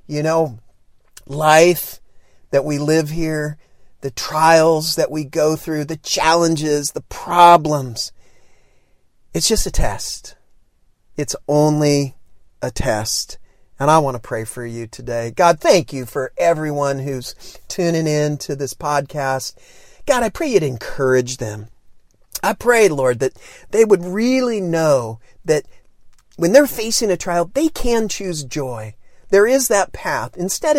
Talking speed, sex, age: 140 wpm, male, 40-59